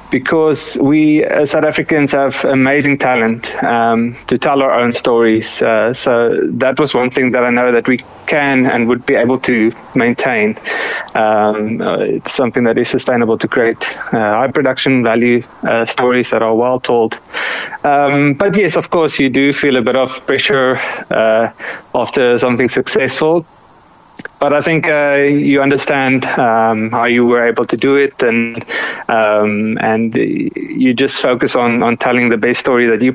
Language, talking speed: English, 170 wpm